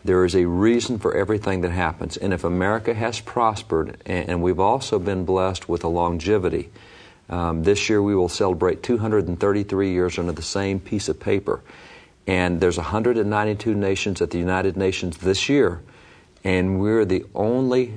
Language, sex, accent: English, male, American